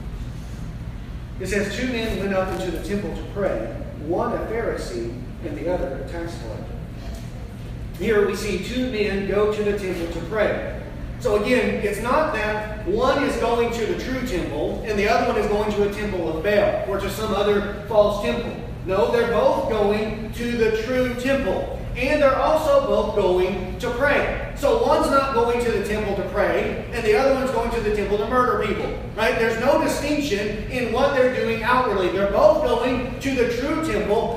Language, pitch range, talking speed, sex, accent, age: English, 205-255 Hz, 195 wpm, male, American, 40-59